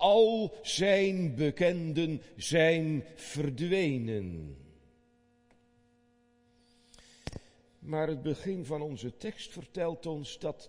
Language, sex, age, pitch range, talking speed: Dutch, male, 50-69, 120-165 Hz, 80 wpm